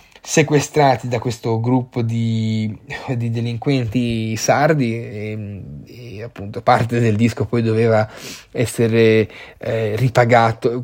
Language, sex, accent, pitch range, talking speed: Italian, male, native, 110-130 Hz, 105 wpm